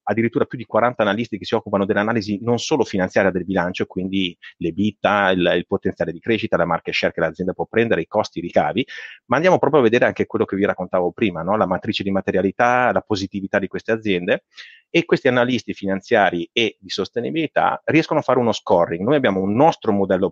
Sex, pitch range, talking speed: male, 95-120 Hz, 205 wpm